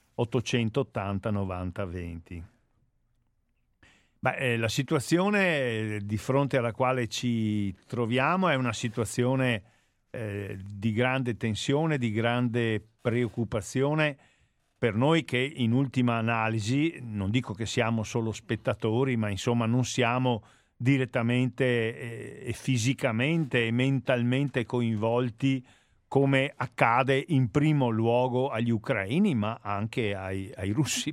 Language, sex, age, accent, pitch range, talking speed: Italian, male, 50-69, native, 110-135 Hz, 110 wpm